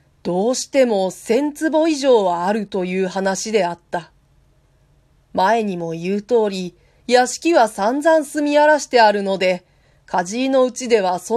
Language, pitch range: Japanese, 185-250 Hz